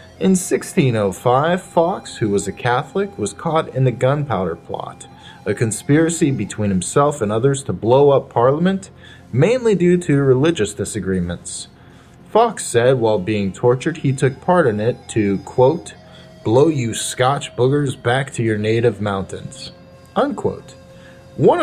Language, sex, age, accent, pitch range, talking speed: English, male, 30-49, American, 100-140 Hz, 140 wpm